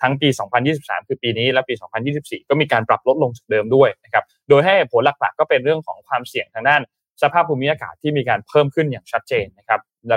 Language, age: Thai, 20-39